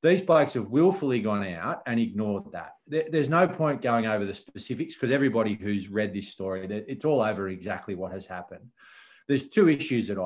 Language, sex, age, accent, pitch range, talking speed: English, male, 30-49, Australian, 105-140 Hz, 195 wpm